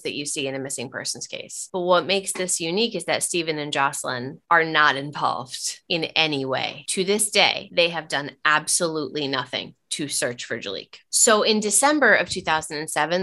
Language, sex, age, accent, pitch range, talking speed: English, female, 20-39, American, 150-195 Hz, 185 wpm